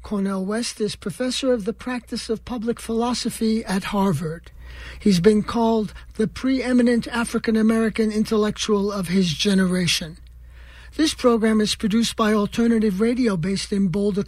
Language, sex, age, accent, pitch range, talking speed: English, male, 60-79, American, 200-235 Hz, 140 wpm